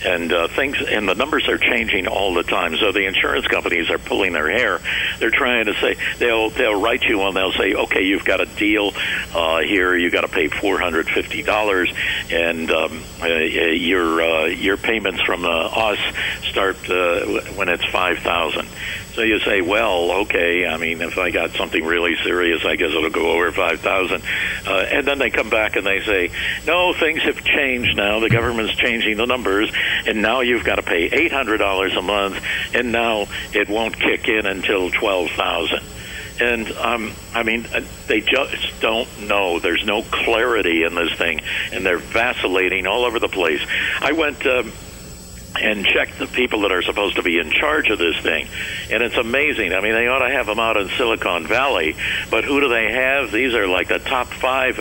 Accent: American